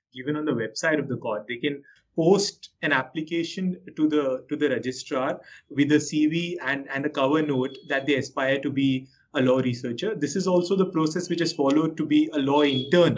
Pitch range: 135-175 Hz